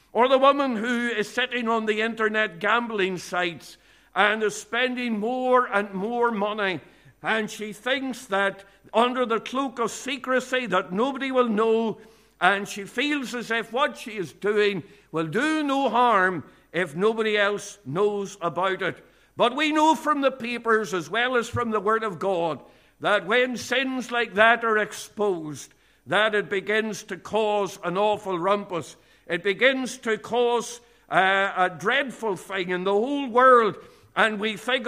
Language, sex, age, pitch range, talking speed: English, male, 60-79, 200-245 Hz, 160 wpm